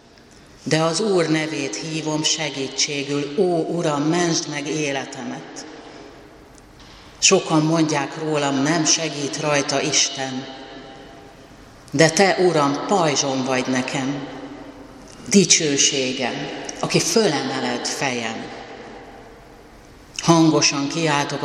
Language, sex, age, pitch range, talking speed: Hungarian, female, 60-79, 130-155 Hz, 85 wpm